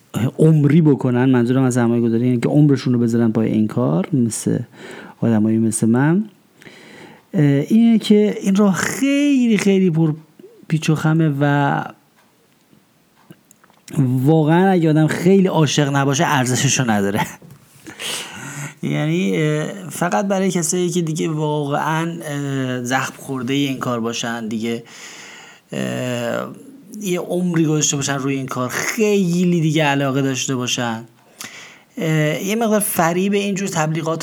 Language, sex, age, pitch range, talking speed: Persian, male, 30-49, 125-160 Hz, 115 wpm